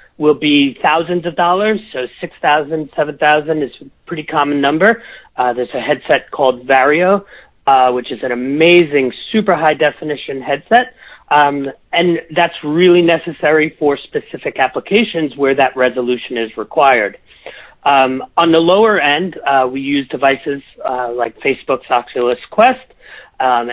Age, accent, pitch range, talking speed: 40-59, American, 130-170 Hz, 140 wpm